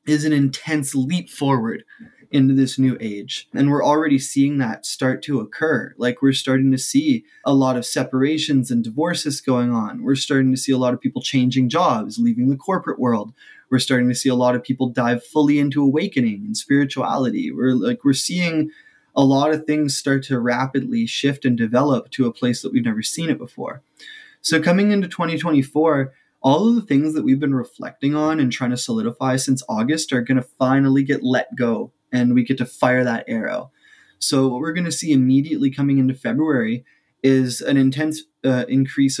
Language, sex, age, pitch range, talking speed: English, male, 20-39, 125-155 Hz, 195 wpm